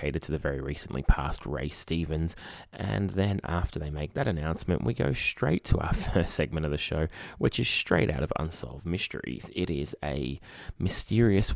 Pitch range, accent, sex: 75-95 Hz, Australian, male